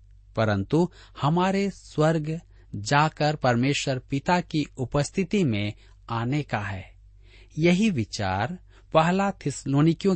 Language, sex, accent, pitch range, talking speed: Hindi, male, native, 100-160 Hz, 95 wpm